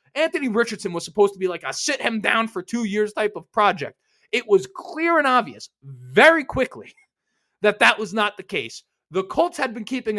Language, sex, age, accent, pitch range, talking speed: English, male, 20-39, American, 190-265 Hz, 205 wpm